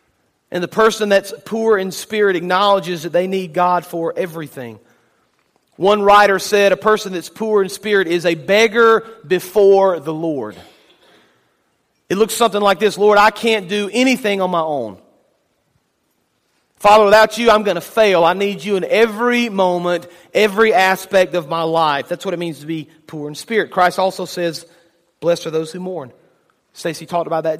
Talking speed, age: 175 wpm, 40-59